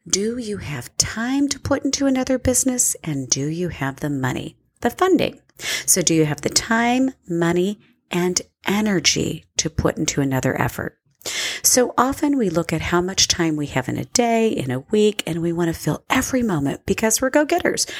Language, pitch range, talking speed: English, 170-245 Hz, 190 wpm